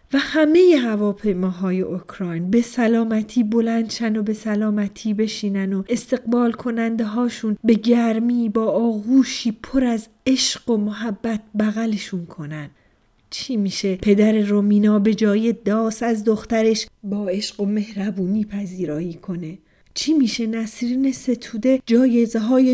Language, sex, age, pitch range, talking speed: Persian, female, 30-49, 200-230 Hz, 120 wpm